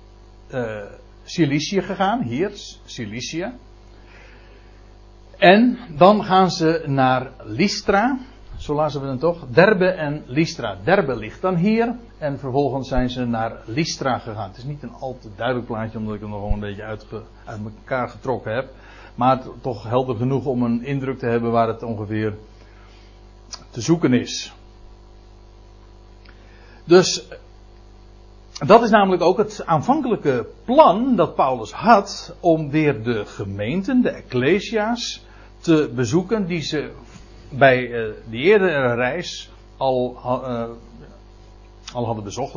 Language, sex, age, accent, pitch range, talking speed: Dutch, male, 60-79, Dutch, 110-145 Hz, 135 wpm